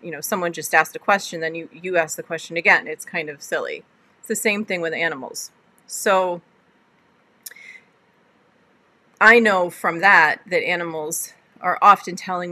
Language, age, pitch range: English, 30-49, 165-220 Hz